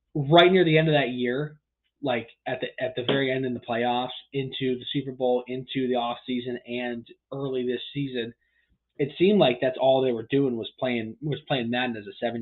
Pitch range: 115-140 Hz